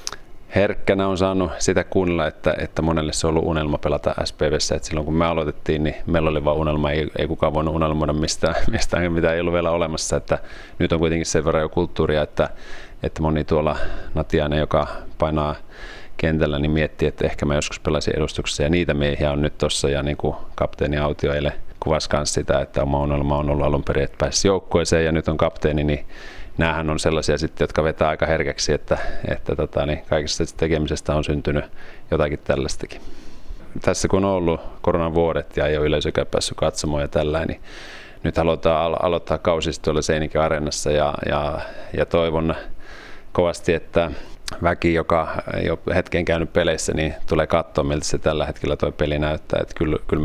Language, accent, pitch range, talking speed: Finnish, native, 75-80 Hz, 170 wpm